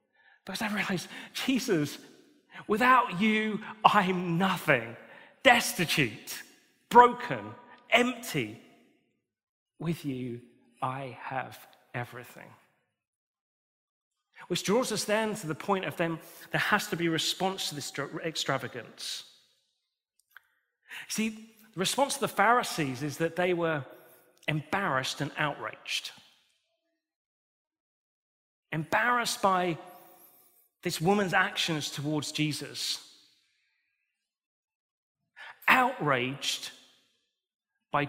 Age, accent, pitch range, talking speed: 40-59, British, 145-230 Hz, 90 wpm